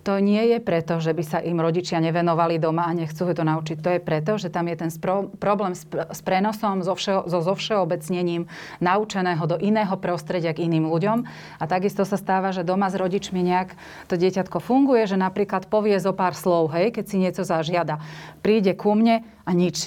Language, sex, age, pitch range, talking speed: Slovak, female, 30-49, 165-195 Hz, 185 wpm